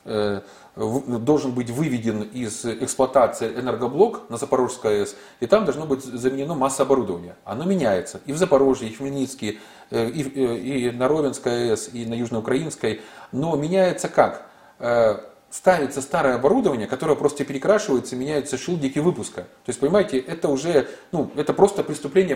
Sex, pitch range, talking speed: male, 125-150 Hz, 140 wpm